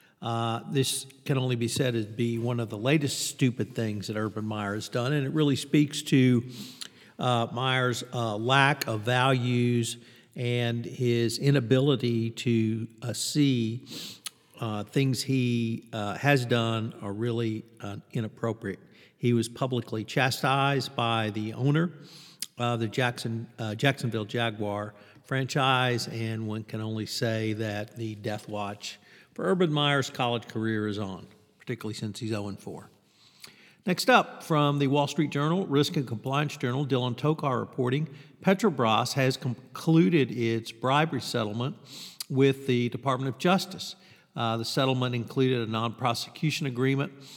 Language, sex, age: English, male, 50-69